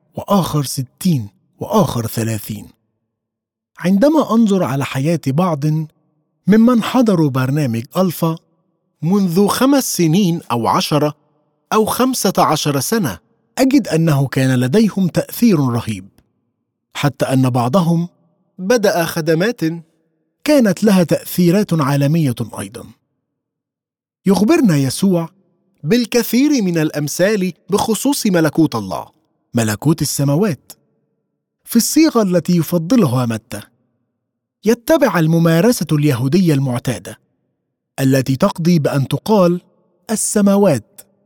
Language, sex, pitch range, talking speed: Arabic, male, 130-200 Hz, 90 wpm